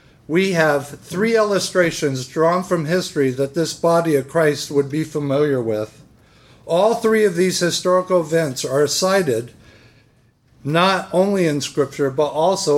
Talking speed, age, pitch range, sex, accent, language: 140 wpm, 50-69, 135-180 Hz, male, American, English